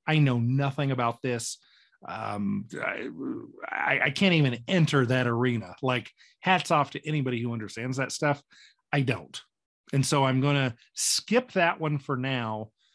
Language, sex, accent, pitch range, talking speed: English, male, American, 120-160 Hz, 160 wpm